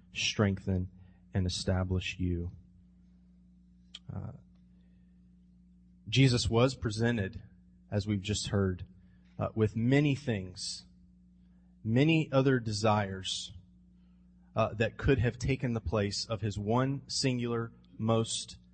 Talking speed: 100 wpm